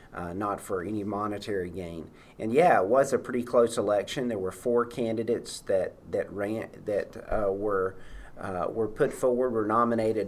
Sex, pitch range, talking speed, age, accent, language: male, 100-120 Hz, 175 wpm, 40-59, American, English